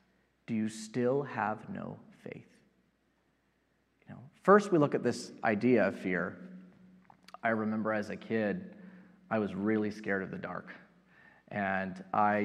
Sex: male